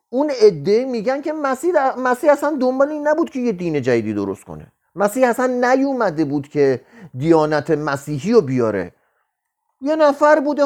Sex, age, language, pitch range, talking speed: male, 40-59, Persian, 155-245 Hz, 160 wpm